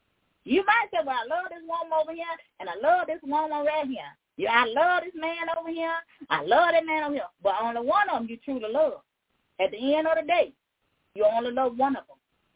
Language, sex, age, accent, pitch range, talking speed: English, female, 40-59, American, 225-330 Hz, 245 wpm